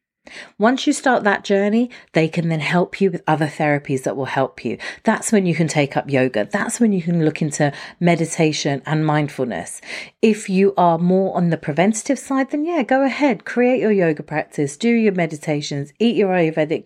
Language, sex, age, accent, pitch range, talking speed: English, female, 40-59, British, 165-225 Hz, 195 wpm